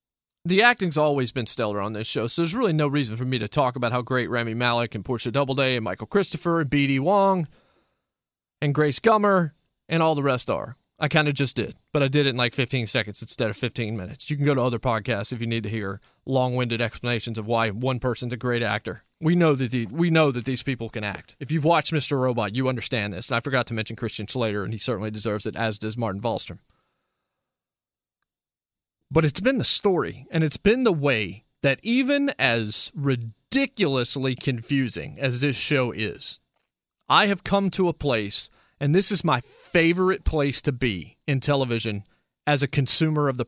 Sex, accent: male, American